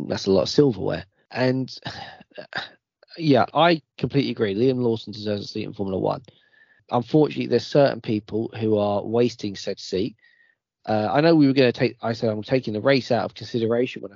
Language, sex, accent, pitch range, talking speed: English, male, British, 105-150 Hz, 190 wpm